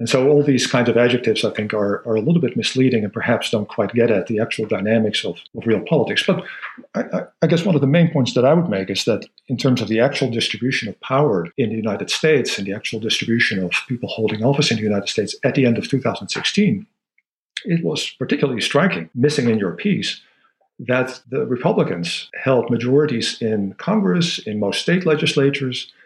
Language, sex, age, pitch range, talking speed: English, male, 50-69, 105-135 Hz, 210 wpm